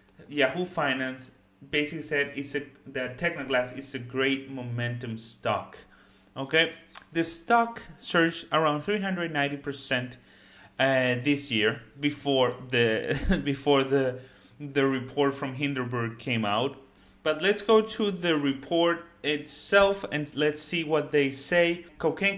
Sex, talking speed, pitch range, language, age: male, 125 wpm, 130-165 Hz, English, 30-49